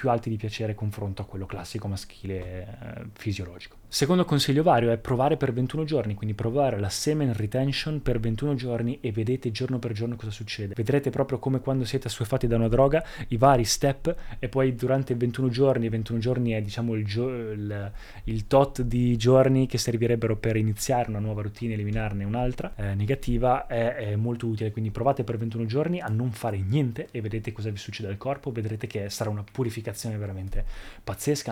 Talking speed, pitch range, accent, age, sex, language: 190 wpm, 110-135 Hz, native, 20-39, male, Italian